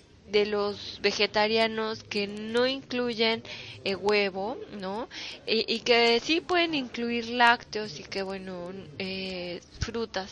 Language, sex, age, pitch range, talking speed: Spanish, female, 20-39, 205-255 Hz, 120 wpm